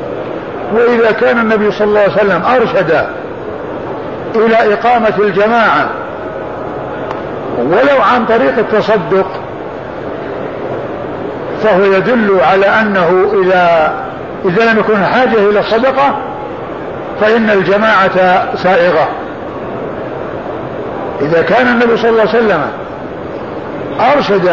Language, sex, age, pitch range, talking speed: Arabic, male, 50-69, 195-230 Hz, 90 wpm